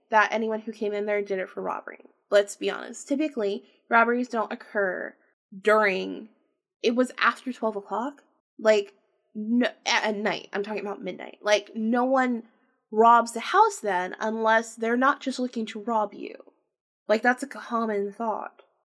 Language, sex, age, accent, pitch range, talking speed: English, female, 20-39, American, 200-240 Hz, 160 wpm